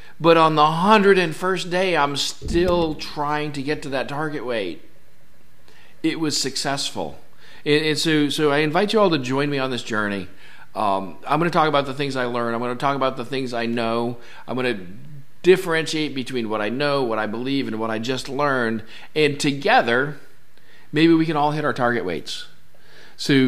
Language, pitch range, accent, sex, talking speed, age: English, 100-145 Hz, American, male, 190 wpm, 40-59